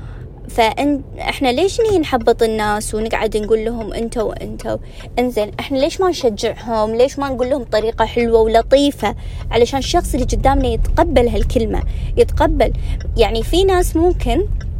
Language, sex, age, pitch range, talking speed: Arabic, female, 20-39, 235-335 Hz, 130 wpm